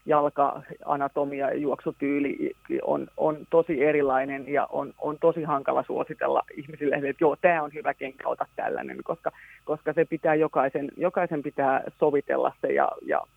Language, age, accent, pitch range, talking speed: Finnish, 30-49, native, 145-165 Hz, 135 wpm